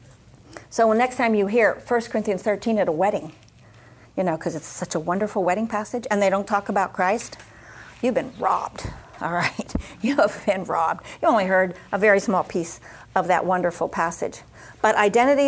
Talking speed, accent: 195 wpm, American